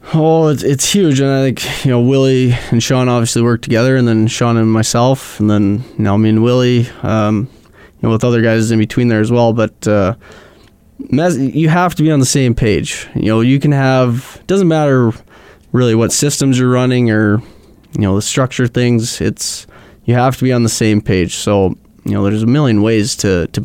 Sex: male